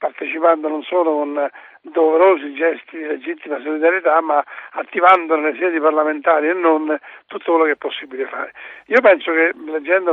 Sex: male